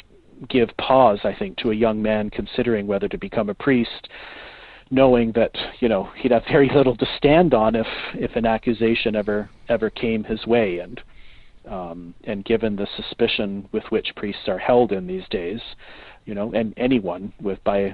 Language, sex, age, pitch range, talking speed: English, male, 40-59, 105-125 Hz, 180 wpm